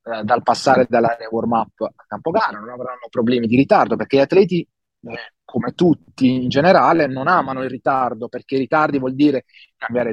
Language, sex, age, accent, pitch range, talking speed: Italian, male, 30-49, native, 120-160 Hz, 180 wpm